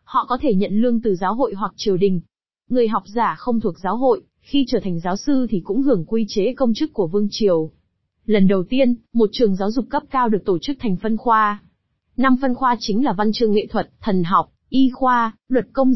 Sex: female